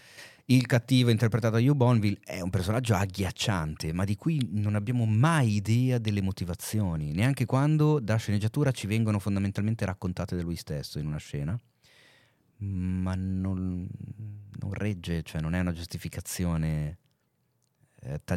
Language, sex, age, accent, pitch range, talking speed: Italian, male, 30-49, native, 85-120 Hz, 140 wpm